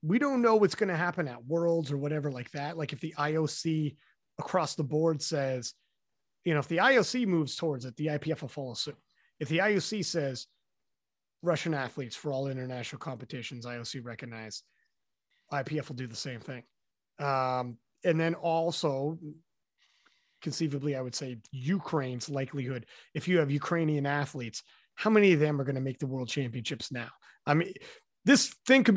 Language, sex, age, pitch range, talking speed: English, male, 30-49, 140-180 Hz, 175 wpm